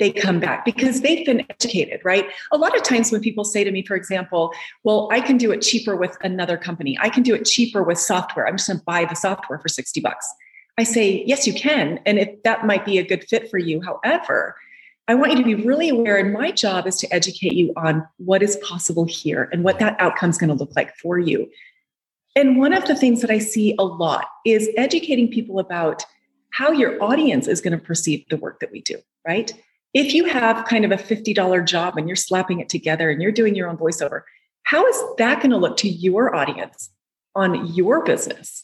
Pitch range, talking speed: 180-260 Hz, 225 wpm